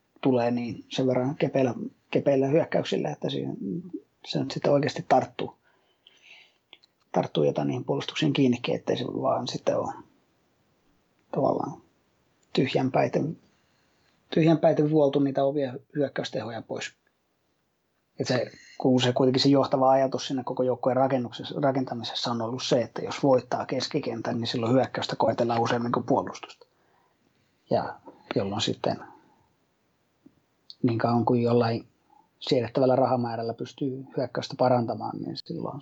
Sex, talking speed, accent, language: male, 110 wpm, native, Finnish